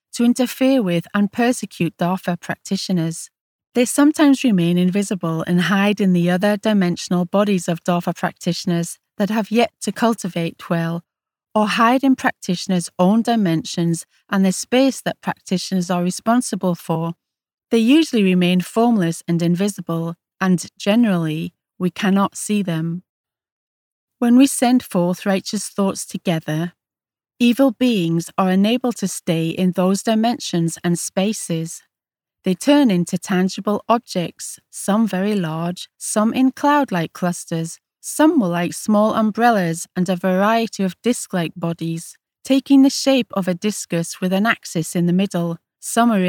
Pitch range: 175-225 Hz